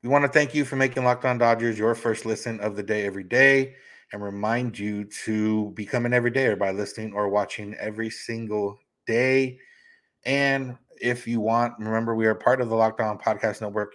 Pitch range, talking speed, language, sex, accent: 105-125 Hz, 190 wpm, English, male, American